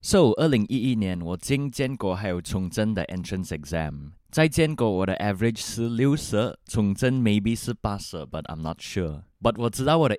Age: 20-39